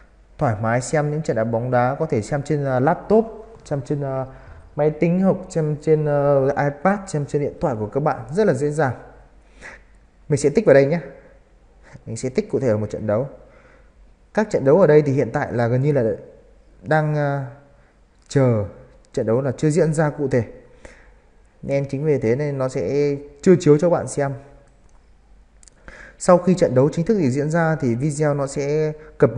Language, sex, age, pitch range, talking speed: Vietnamese, male, 20-39, 105-150 Hz, 200 wpm